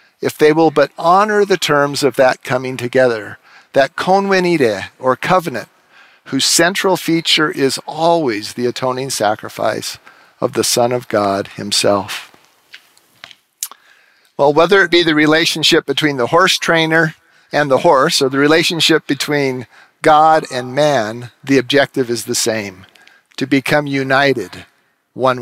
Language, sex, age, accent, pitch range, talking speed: English, male, 50-69, American, 130-165 Hz, 135 wpm